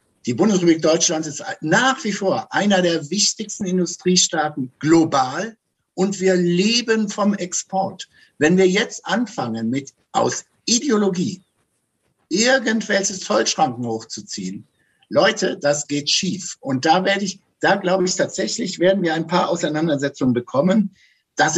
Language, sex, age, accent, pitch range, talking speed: German, male, 60-79, German, 140-200 Hz, 130 wpm